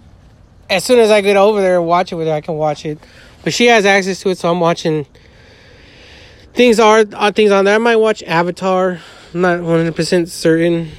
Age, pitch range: 30-49, 150-210 Hz